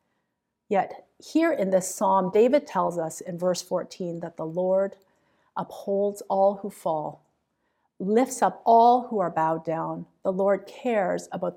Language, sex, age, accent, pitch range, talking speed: English, female, 50-69, American, 175-230 Hz, 150 wpm